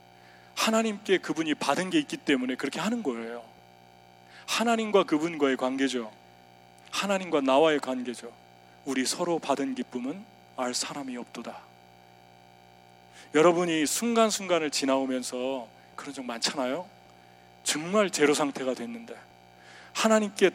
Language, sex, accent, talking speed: English, male, Korean, 95 wpm